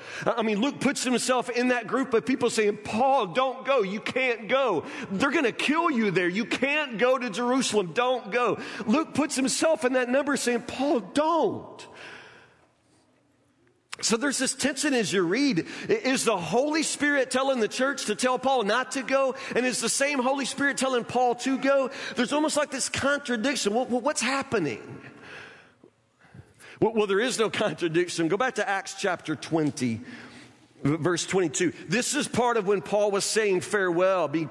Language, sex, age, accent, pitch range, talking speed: English, male, 40-59, American, 190-265 Hz, 170 wpm